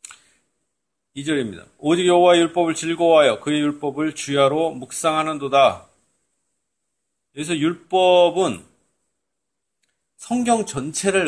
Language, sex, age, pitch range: Korean, male, 40-59, 115-165 Hz